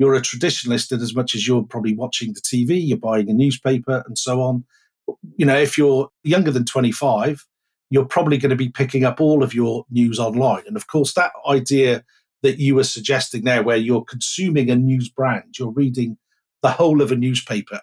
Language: English